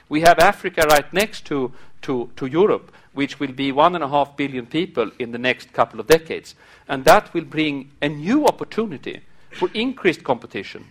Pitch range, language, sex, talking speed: 140-185 Hz, English, male, 165 wpm